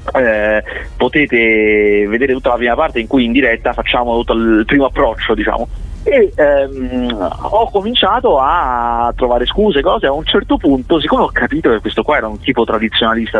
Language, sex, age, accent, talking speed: English, male, 30-49, Italian, 170 wpm